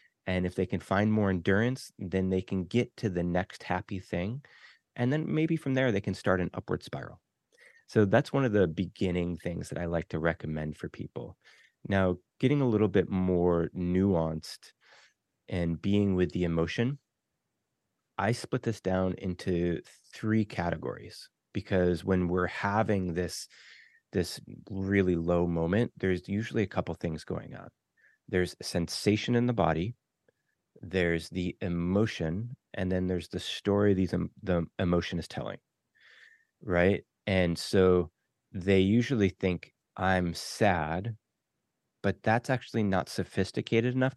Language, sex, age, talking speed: English, male, 30-49, 145 wpm